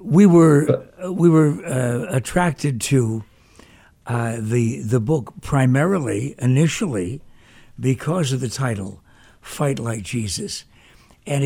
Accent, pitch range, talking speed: American, 115-150 Hz, 110 wpm